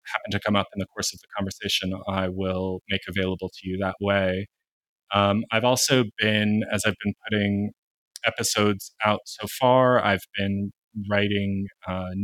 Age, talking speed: 20-39, 165 wpm